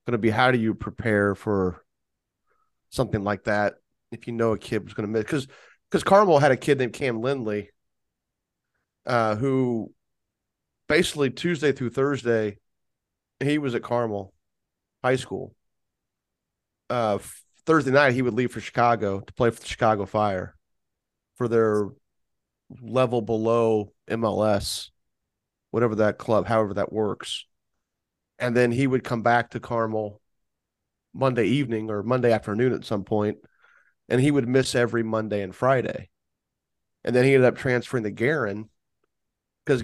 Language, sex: English, male